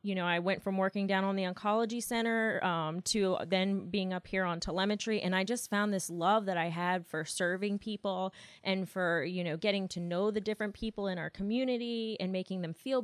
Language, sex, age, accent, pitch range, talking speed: English, female, 20-39, American, 175-205 Hz, 220 wpm